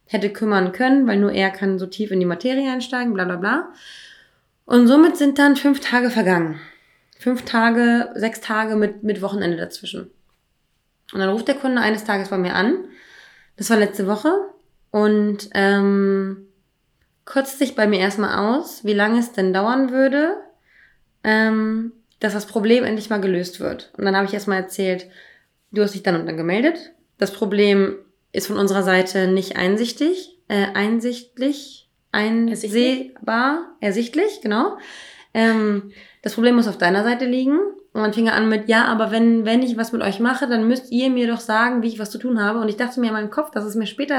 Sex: female